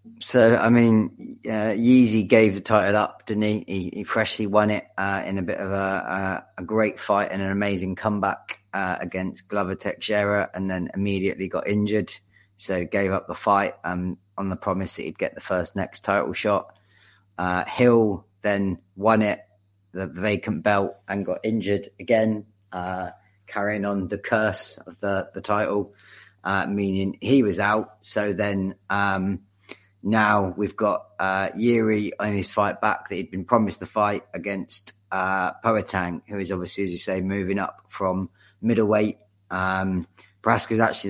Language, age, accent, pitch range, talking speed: English, 30-49, British, 95-105 Hz, 170 wpm